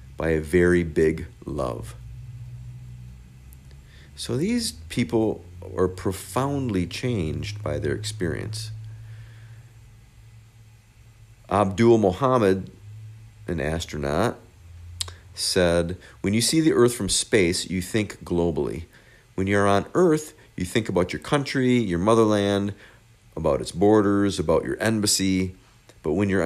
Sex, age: male, 50-69